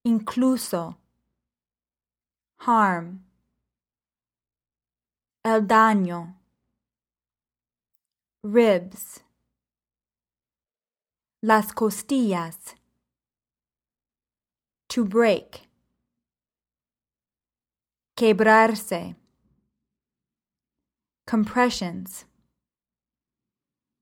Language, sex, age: English, female, 20-39